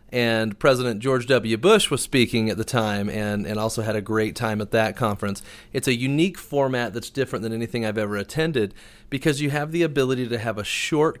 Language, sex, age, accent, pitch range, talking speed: English, male, 30-49, American, 110-140 Hz, 215 wpm